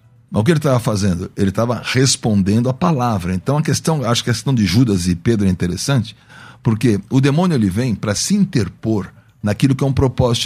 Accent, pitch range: Brazilian, 110-150 Hz